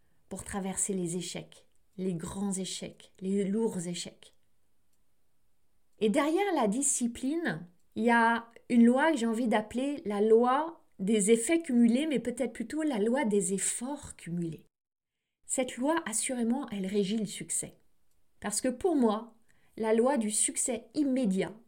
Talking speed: 145 wpm